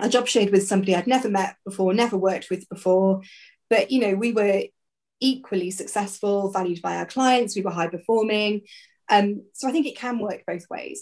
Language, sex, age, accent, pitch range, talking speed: English, female, 20-39, British, 180-220 Hz, 205 wpm